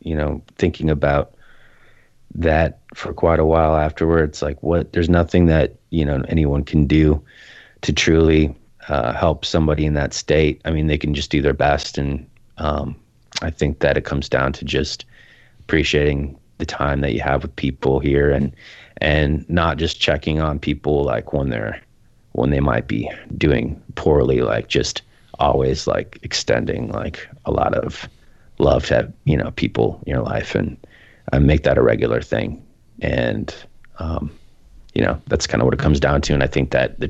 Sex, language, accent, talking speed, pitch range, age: male, English, American, 185 wpm, 70-80 Hz, 30-49